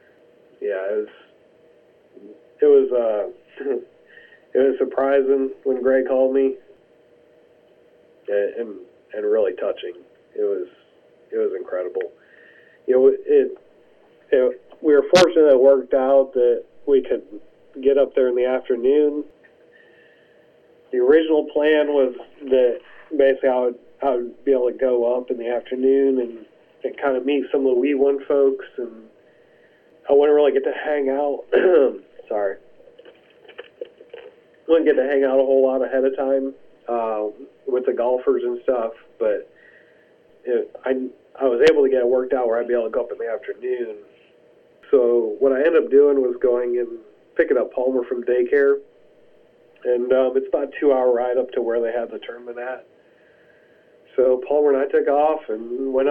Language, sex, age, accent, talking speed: English, male, 40-59, American, 170 wpm